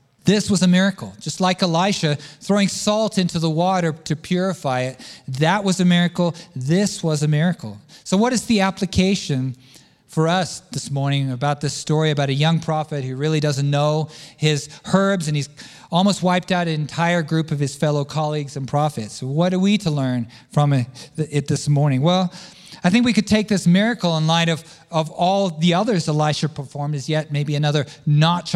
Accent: American